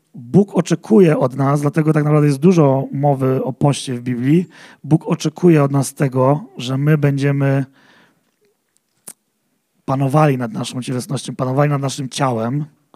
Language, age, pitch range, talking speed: Polish, 40-59, 140-170 Hz, 140 wpm